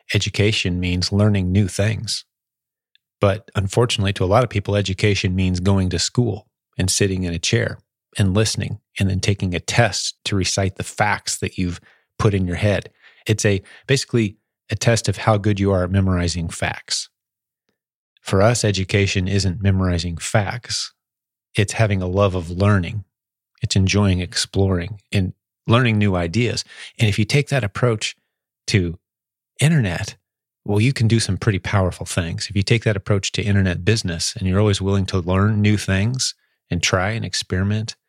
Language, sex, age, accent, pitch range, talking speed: English, male, 30-49, American, 95-110 Hz, 170 wpm